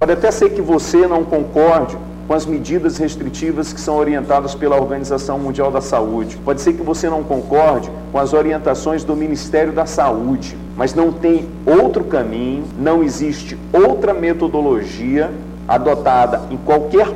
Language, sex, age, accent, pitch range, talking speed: Portuguese, male, 40-59, Brazilian, 135-160 Hz, 155 wpm